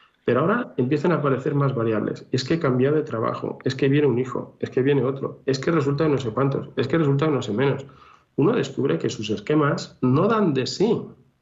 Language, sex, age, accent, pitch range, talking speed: Spanish, male, 40-59, Spanish, 115-155 Hz, 235 wpm